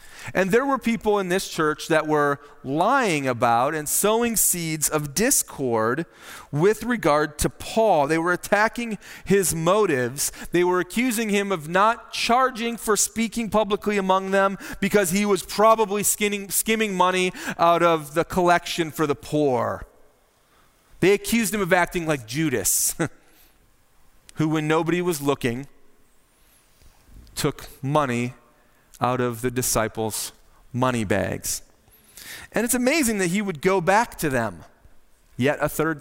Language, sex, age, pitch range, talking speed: English, male, 30-49, 145-205 Hz, 140 wpm